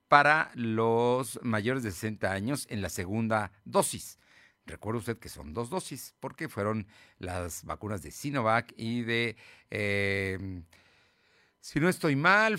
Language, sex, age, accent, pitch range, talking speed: Spanish, male, 50-69, Mexican, 100-140 Hz, 140 wpm